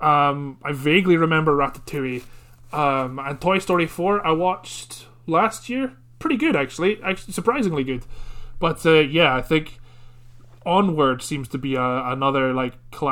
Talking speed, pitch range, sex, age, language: 150 wpm, 125-160 Hz, male, 20-39, English